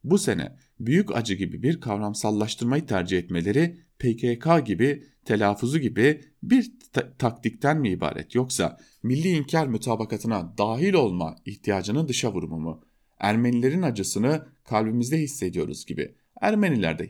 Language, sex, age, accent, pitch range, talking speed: German, male, 40-59, Turkish, 100-150 Hz, 115 wpm